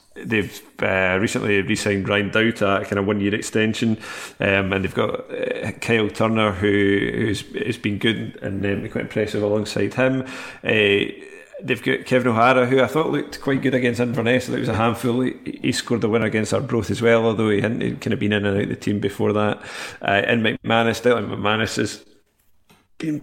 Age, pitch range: 30-49, 105-125 Hz